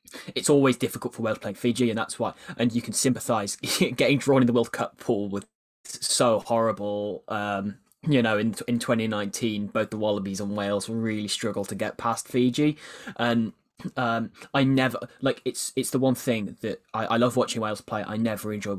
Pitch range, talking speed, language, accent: 105-125 Hz, 195 wpm, English, British